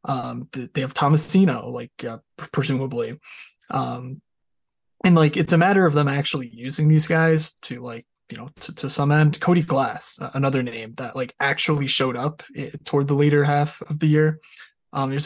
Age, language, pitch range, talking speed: 20-39, English, 130-160 Hz, 175 wpm